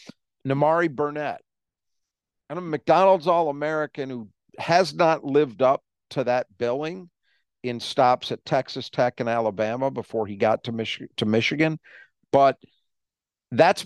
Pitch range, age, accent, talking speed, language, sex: 120-160 Hz, 50-69, American, 130 wpm, English, male